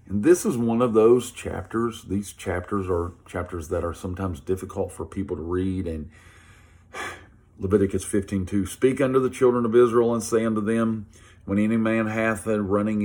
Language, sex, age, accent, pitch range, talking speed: English, male, 40-59, American, 95-115 Hz, 180 wpm